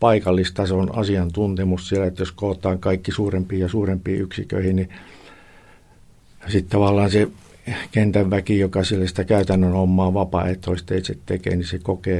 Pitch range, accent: 90-100 Hz, native